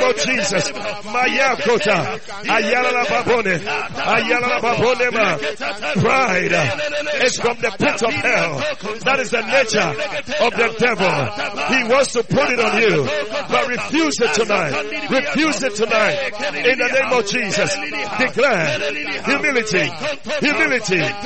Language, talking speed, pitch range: English, 105 wpm, 225-290 Hz